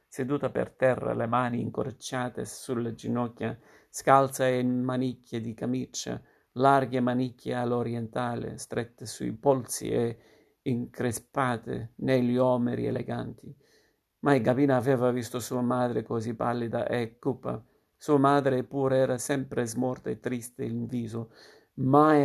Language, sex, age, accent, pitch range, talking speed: Italian, male, 50-69, native, 120-130 Hz, 120 wpm